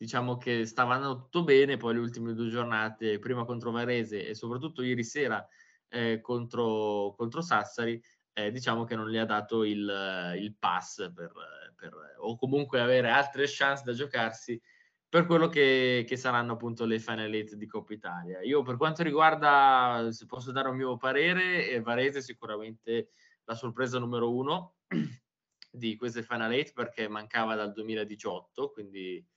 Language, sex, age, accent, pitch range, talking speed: Italian, male, 20-39, native, 110-130 Hz, 165 wpm